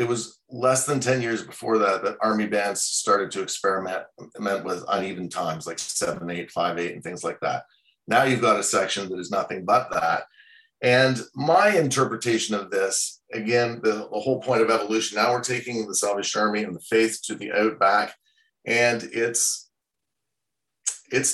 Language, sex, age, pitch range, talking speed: English, male, 40-59, 110-135 Hz, 175 wpm